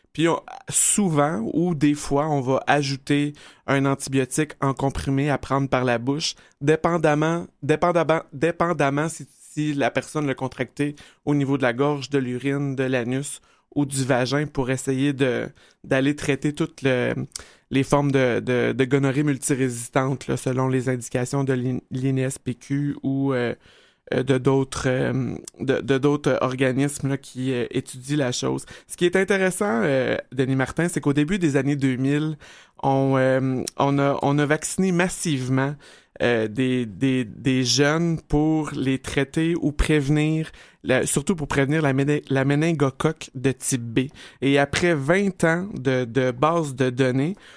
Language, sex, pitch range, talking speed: French, male, 130-150 Hz, 155 wpm